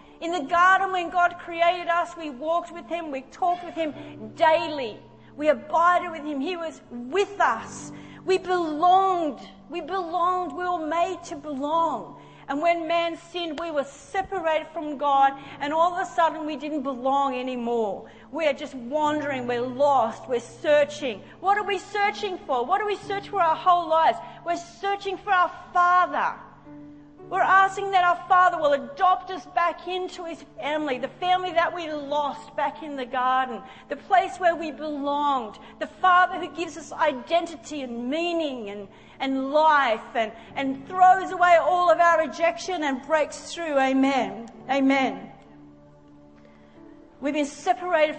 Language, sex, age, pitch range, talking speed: English, female, 40-59, 275-350 Hz, 160 wpm